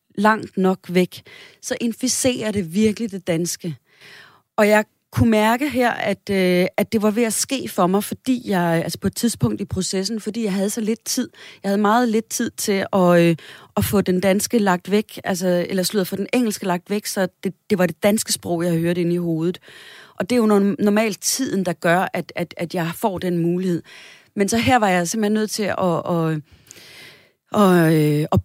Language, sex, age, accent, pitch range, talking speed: Danish, female, 30-49, native, 175-215 Hz, 200 wpm